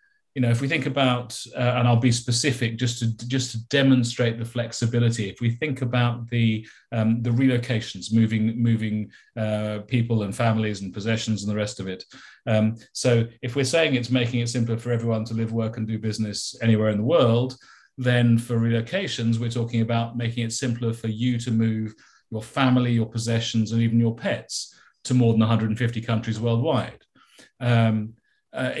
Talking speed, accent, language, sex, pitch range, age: 185 wpm, British, English, male, 115-125 Hz, 40-59